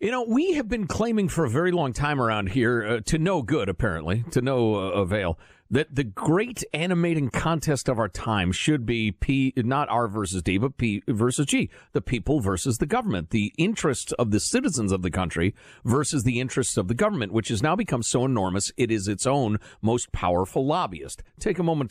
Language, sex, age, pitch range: English, male, 50-69, 105-165 Hz